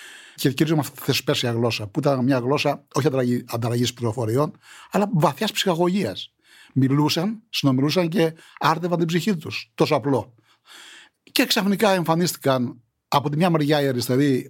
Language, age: Greek, 60-79